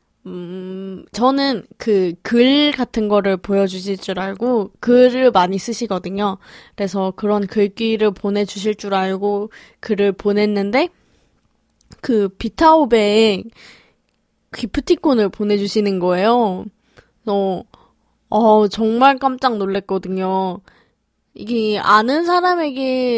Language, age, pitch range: Korean, 20-39, 195-235 Hz